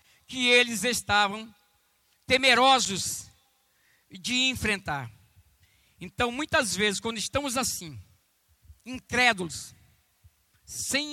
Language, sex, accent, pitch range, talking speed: Portuguese, male, Brazilian, 160-265 Hz, 75 wpm